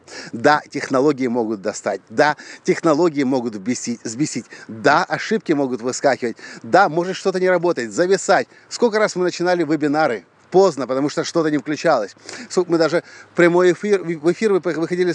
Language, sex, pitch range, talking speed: Russian, male, 145-185 Hz, 150 wpm